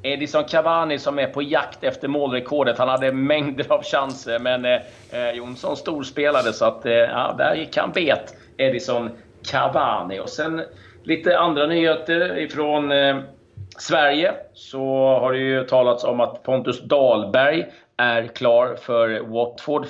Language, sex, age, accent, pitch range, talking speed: Swedish, male, 30-49, native, 110-135 Hz, 145 wpm